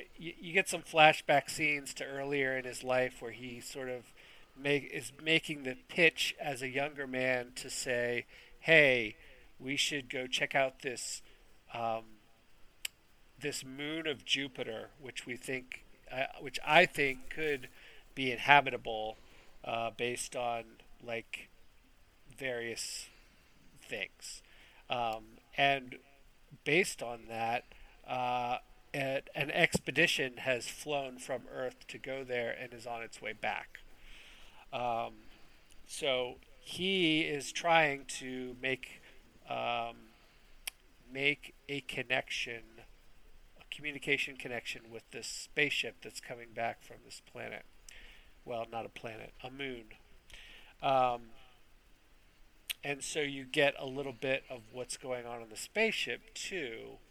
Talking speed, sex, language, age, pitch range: 125 wpm, male, English, 40-59, 120-140 Hz